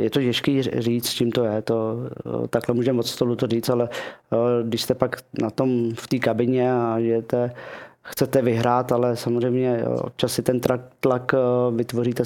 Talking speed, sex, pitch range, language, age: 170 wpm, male, 115-125 Hz, Czech, 20-39